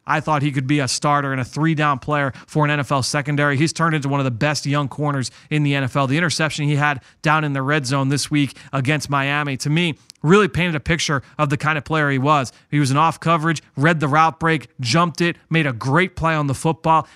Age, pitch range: 30-49, 140-170 Hz